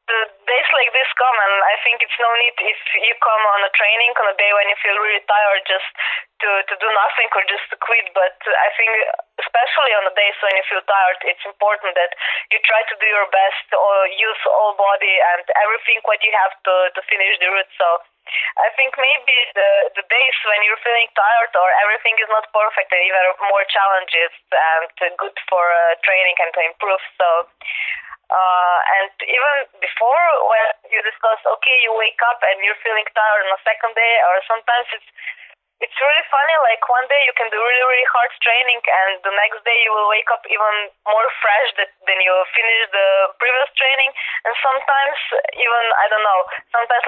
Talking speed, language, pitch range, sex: 200 wpm, German, 190-235 Hz, female